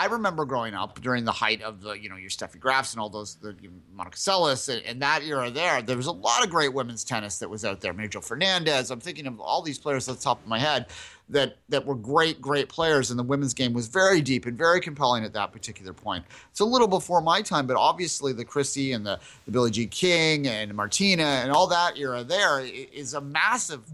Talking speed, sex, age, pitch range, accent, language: 245 wpm, male, 30-49, 120-150 Hz, American, English